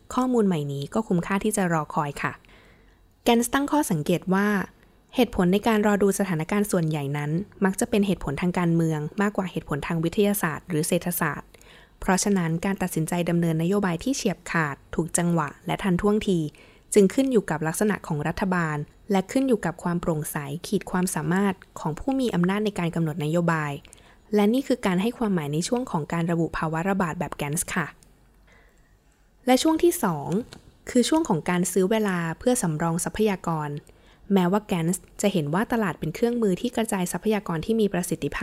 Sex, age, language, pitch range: female, 20-39, Thai, 165-210 Hz